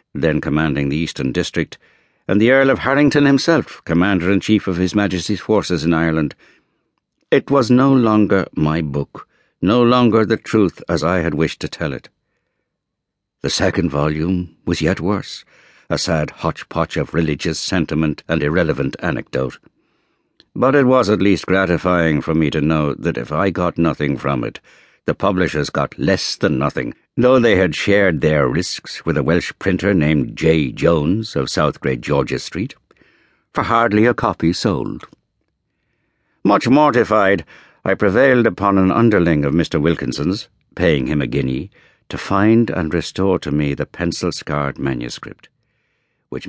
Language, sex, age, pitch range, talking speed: English, male, 60-79, 75-105 Hz, 155 wpm